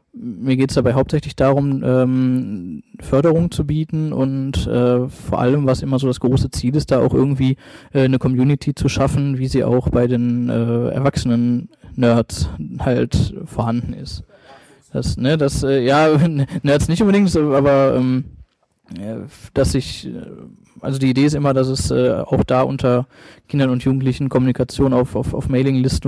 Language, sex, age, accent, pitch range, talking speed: German, male, 20-39, German, 125-140 Hz, 170 wpm